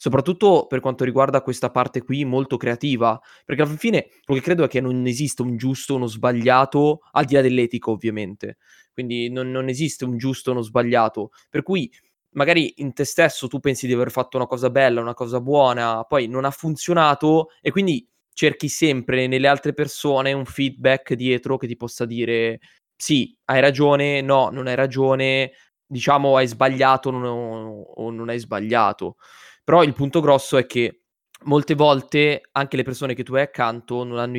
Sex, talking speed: male, 185 wpm